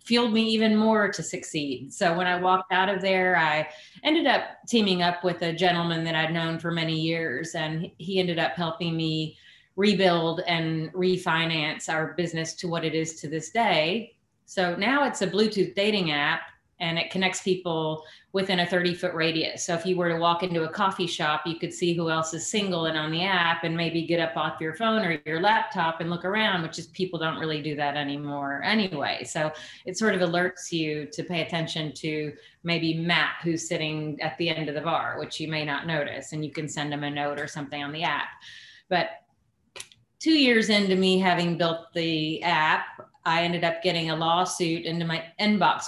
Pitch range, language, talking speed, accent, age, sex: 160-180 Hz, English, 205 wpm, American, 30-49, female